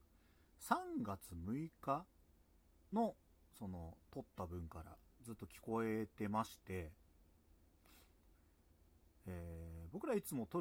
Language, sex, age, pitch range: Japanese, male, 40-59, 80-115 Hz